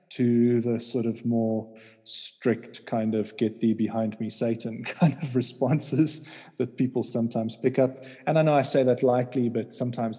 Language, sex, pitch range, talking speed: English, male, 115-135 Hz, 175 wpm